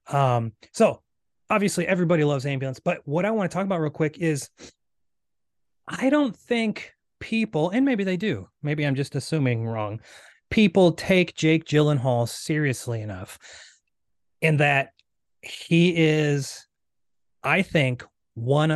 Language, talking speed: English, 135 wpm